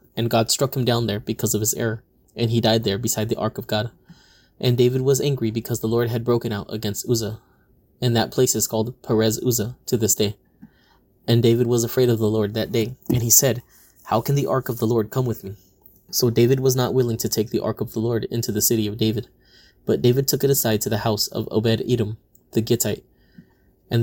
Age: 20-39